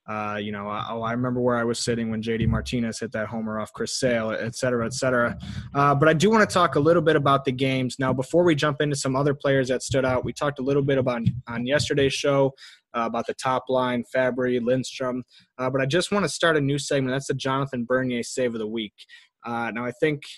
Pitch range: 120-140 Hz